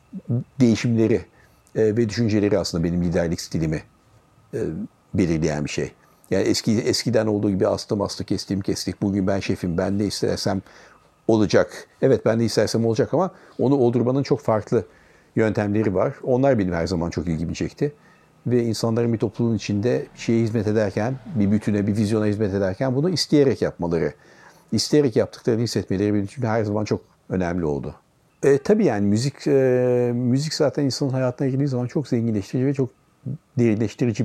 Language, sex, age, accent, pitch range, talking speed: Turkish, male, 60-79, native, 105-125 Hz, 155 wpm